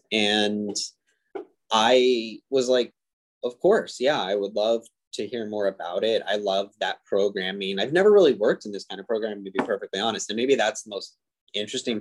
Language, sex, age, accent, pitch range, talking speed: English, male, 20-39, American, 100-130 Hz, 190 wpm